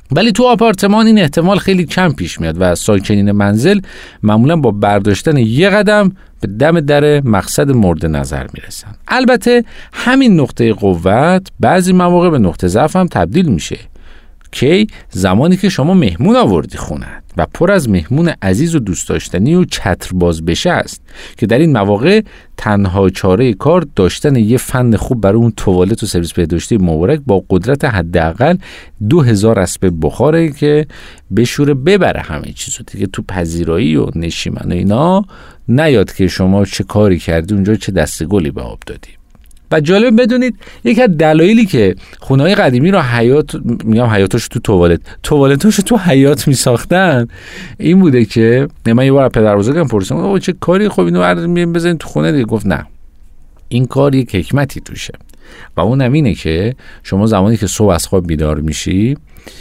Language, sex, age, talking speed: Persian, male, 50-69, 160 wpm